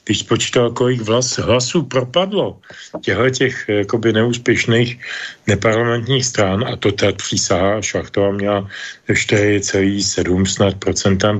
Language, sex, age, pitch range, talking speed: Slovak, male, 40-59, 105-125 Hz, 90 wpm